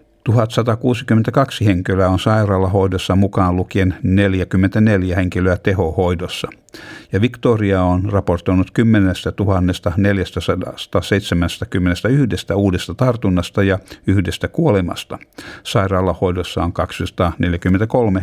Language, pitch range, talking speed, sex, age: Finnish, 90-110 Hz, 75 wpm, male, 60-79